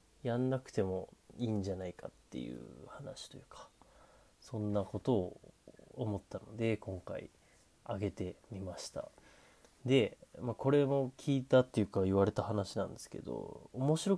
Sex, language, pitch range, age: male, Japanese, 95-115 Hz, 30-49